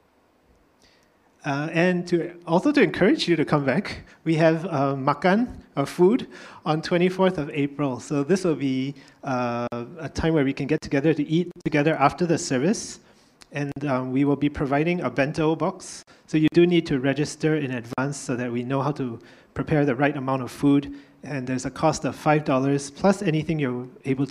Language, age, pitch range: English, 30-49, 135-165 Hz